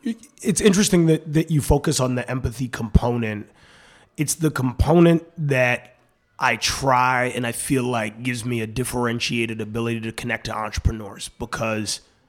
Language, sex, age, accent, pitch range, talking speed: English, male, 30-49, American, 110-130 Hz, 145 wpm